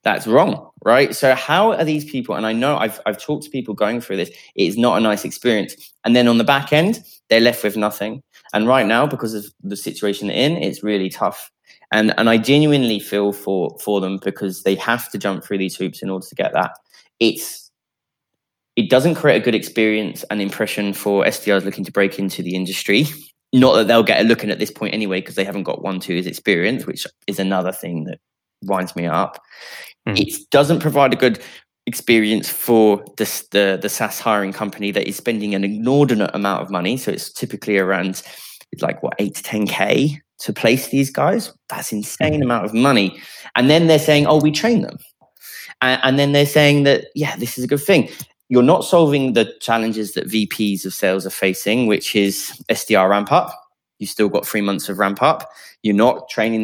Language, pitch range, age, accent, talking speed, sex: English, 100-135 Hz, 20-39, British, 205 wpm, male